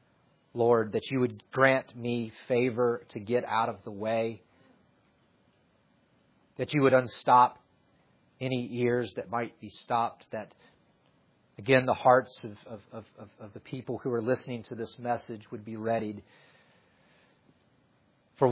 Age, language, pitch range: 40-59, English, 115-140 Hz